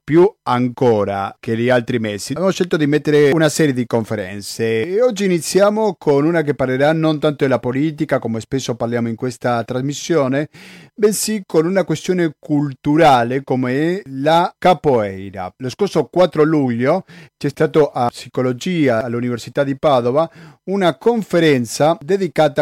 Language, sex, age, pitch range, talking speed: Italian, male, 40-59, 125-160 Hz, 140 wpm